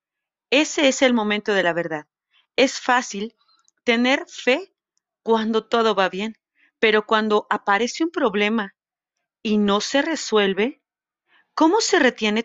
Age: 40-59